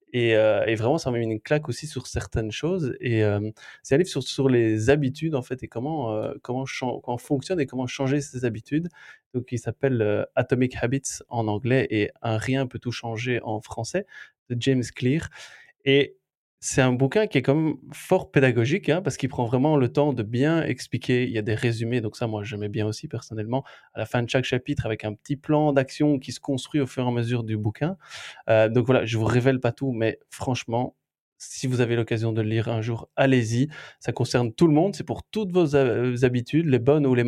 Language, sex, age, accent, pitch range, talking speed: French, male, 20-39, French, 115-140 Hz, 235 wpm